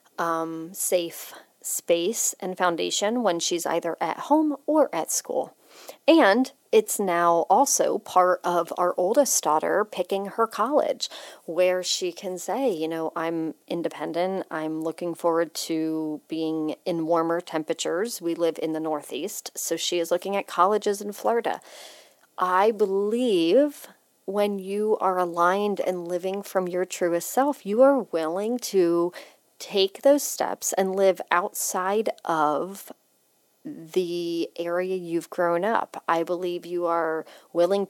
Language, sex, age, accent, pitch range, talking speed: English, female, 40-59, American, 170-215 Hz, 140 wpm